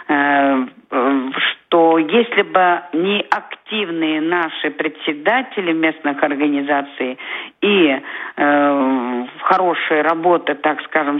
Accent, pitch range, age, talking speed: native, 145-170 Hz, 50-69, 80 wpm